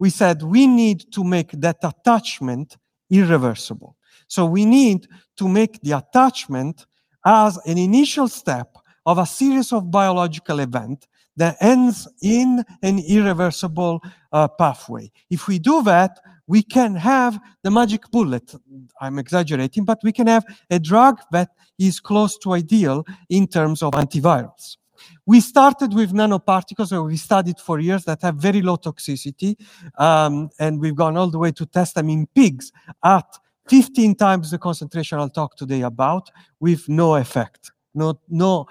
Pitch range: 155-210 Hz